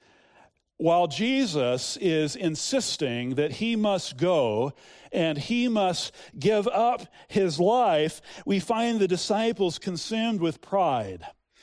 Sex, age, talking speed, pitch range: male, 40-59, 115 wpm, 145-185 Hz